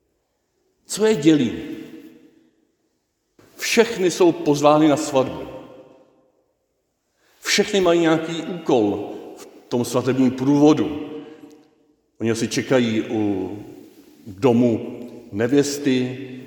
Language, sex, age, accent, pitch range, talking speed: Czech, male, 50-69, native, 120-160 Hz, 80 wpm